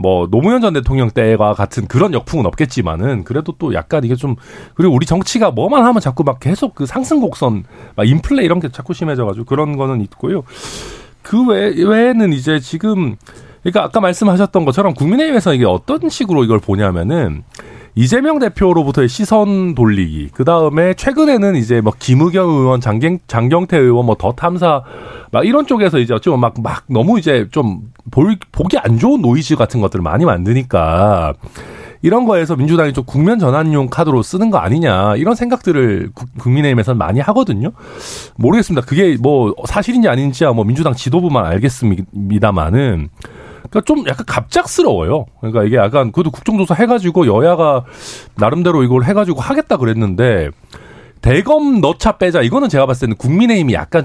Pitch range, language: 120-190 Hz, Korean